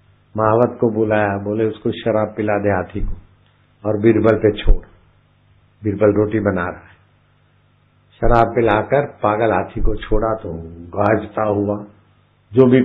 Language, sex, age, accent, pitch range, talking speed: Hindi, male, 60-79, native, 105-130 Hz, 140 wpm